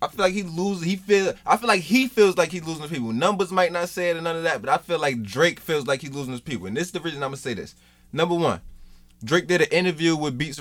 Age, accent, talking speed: 20-39, American, 300 wpm